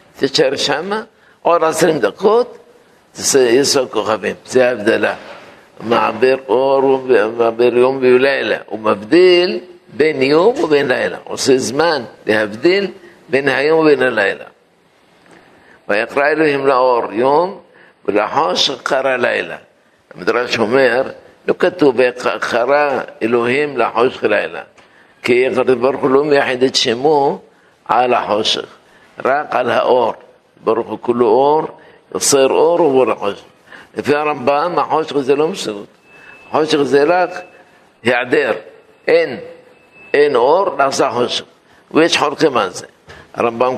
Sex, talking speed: male, 100 wpm